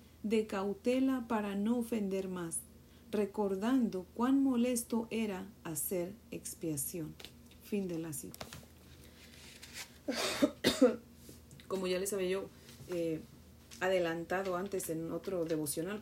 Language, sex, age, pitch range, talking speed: Spanish, female, 40-59, 155-190 Hz, 100 wpm